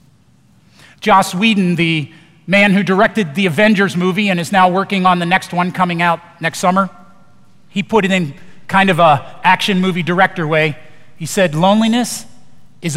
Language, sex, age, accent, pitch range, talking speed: English, male, 40-59, American, 175-250 Hz, 165 wpm